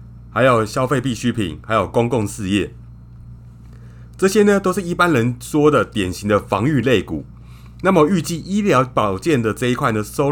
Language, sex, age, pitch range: Chinese, male, 30-49, 90-145 Hz